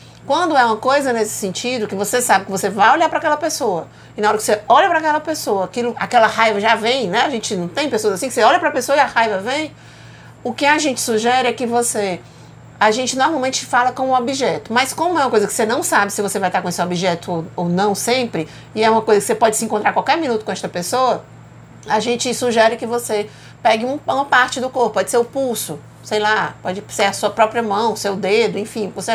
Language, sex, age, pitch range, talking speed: Portuguese, female, 50-69, 210-260 Hz, 255 wpm